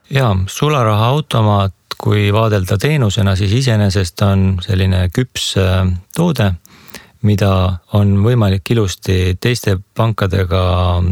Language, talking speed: English, 95 wpm